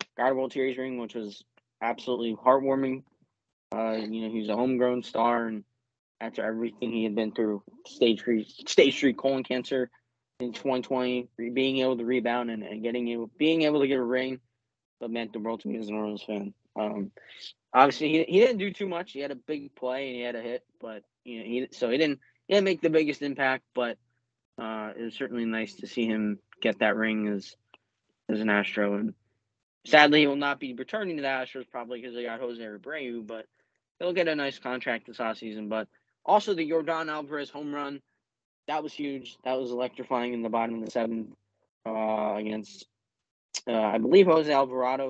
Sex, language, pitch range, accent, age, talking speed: male, English, 110-135 Hz, American, 20-39, 200 wpm